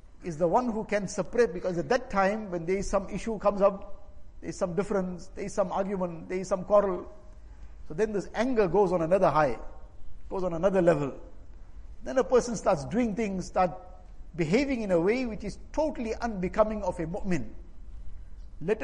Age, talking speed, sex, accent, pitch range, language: 60-79, 190 wpm, male, Indian, 145-215 Hz, English